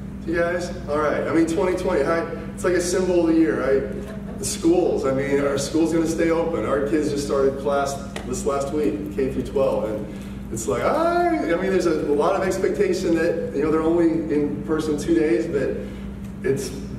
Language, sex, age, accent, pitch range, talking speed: English, male, 20-39, American, 135-170 Hz, 210 wpm